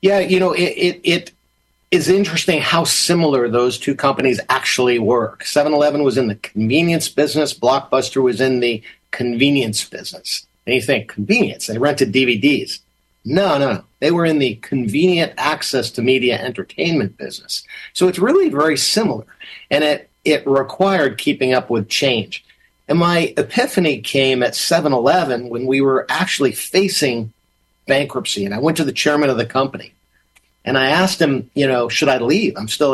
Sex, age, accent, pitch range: male, 50-69, American, 120-160 Hz